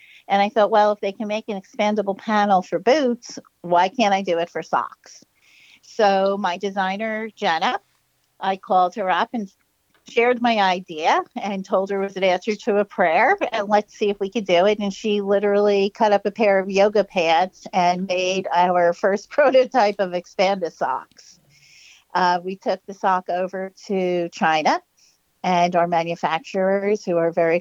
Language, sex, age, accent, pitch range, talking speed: English, female, 50-69, American, 180-215 Hz, 180 wpm